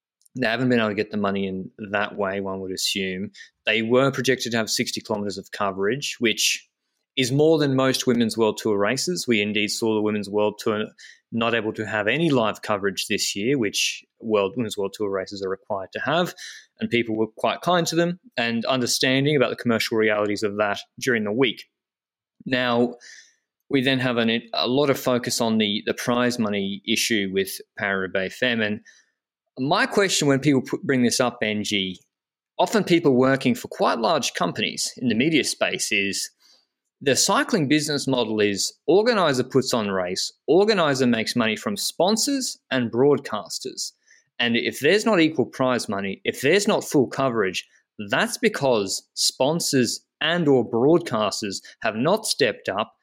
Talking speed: 175 wpm